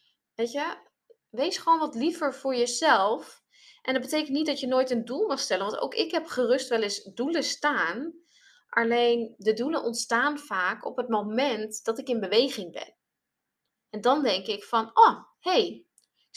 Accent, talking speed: Dutch, 180 wpm